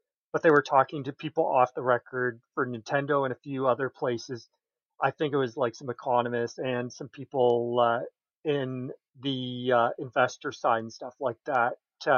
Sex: male